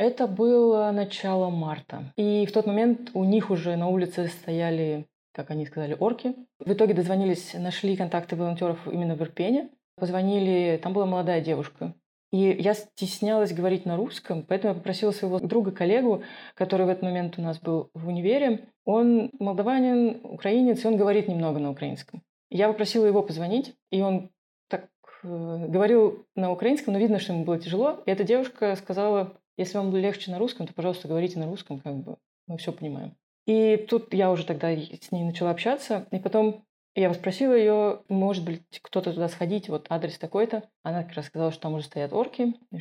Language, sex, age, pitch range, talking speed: Russian, female, 20-39, 170-215 Hz, 180 wpm